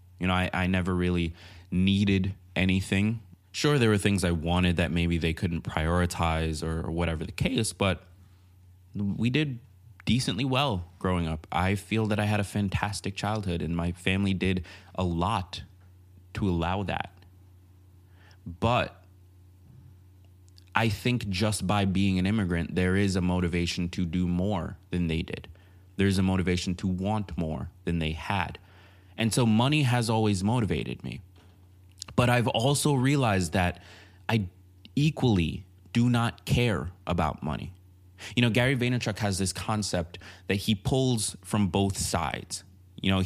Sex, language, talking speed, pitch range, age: male, English, 150 wpm, 90-105 Hz, 20-39